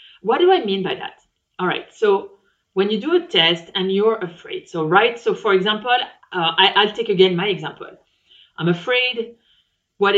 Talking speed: 185 wpm